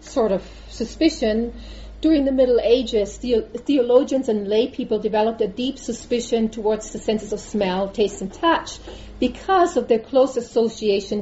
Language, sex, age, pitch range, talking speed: English, female, 40-59, 190-250 Hz, 155 wpm